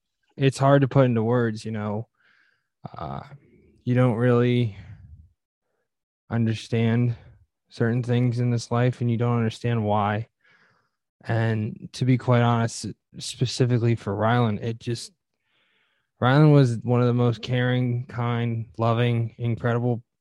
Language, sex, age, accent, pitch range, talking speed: English, male, 20-39, American, 110-125 Hz, 130 wpm